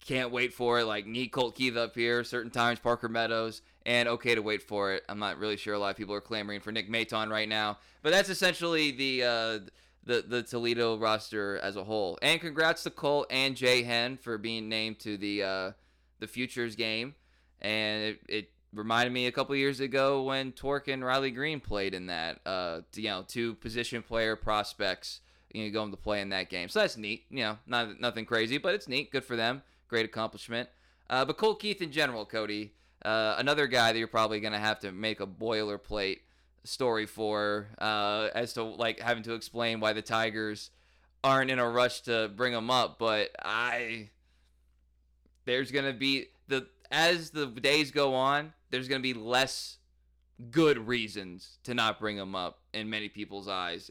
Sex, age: male, 20-39